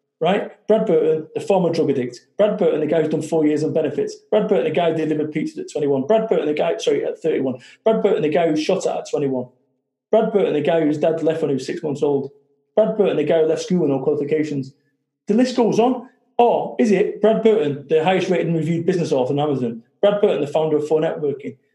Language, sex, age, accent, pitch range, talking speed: English, male, 30-49, British, 150-215 Hz, 245 wpm